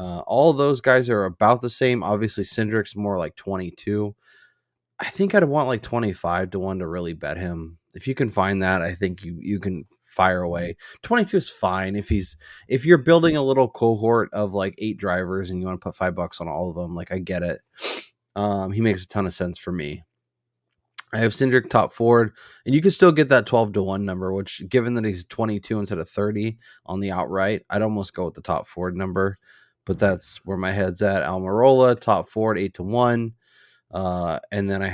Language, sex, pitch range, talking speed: English, male, 95-120 Hz, 220 wpm